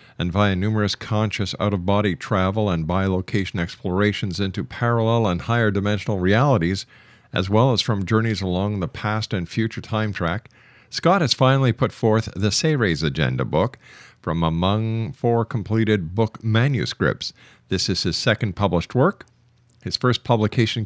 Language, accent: English, American